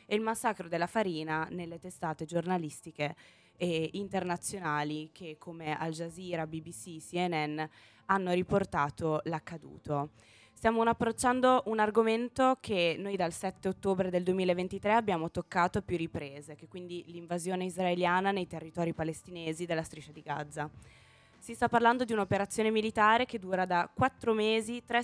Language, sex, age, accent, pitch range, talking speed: Italian, female, 20-39, native, 165-205 Hz, 145 wpm